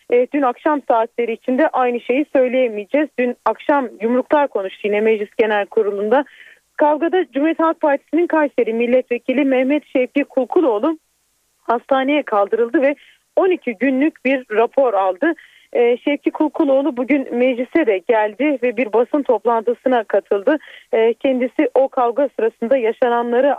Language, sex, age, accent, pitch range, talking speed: Turkish, female, 30-49, native, 225-295 Hz, 120 wpm